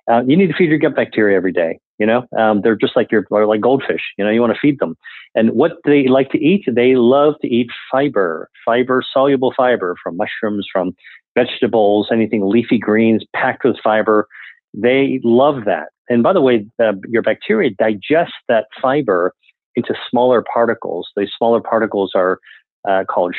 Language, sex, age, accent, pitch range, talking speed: English, male, 40-59, American, 105-130 Hz, 185 wpm